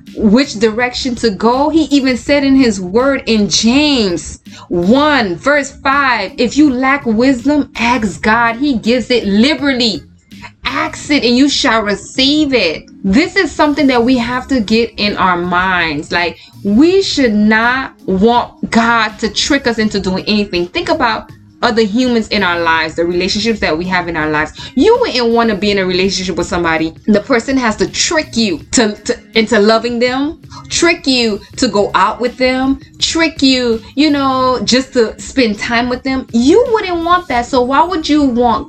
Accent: American